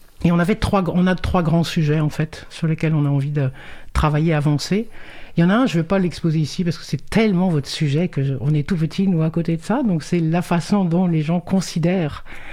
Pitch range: 160-200 Hz